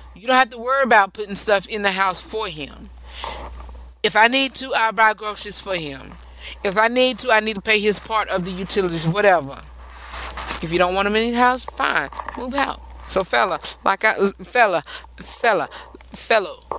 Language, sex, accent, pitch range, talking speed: English, female, American, 150-205 Hz, 195 wpm